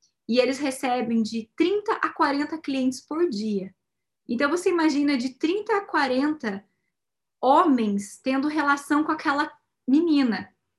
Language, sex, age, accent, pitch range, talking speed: Portuguese, female, 10-29, Brazilian, 245-325 Hz, 130 wpm